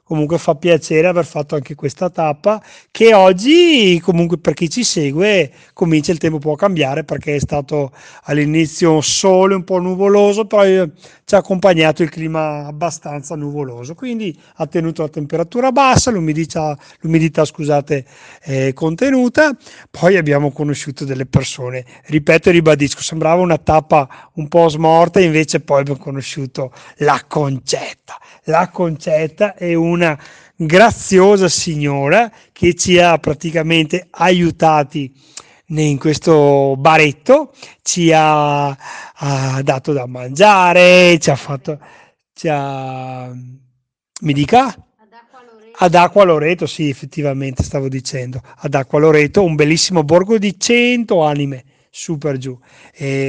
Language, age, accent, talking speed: Italian, 40-59, native, 125 wpm